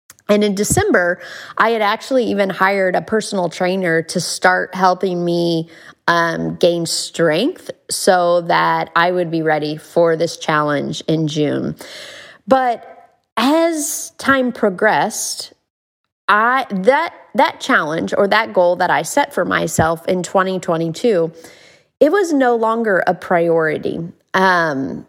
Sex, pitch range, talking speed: female, 170-225 Hz, 130 wpm